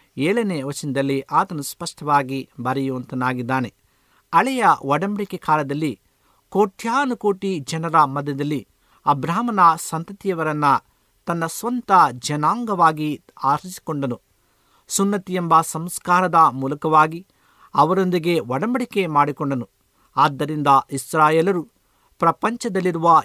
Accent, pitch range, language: native, 135-185 Hz, Kannada